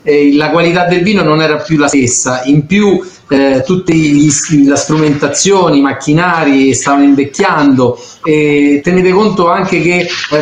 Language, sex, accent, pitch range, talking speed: Italian, male, native, 150-190 Hz, 145 wpm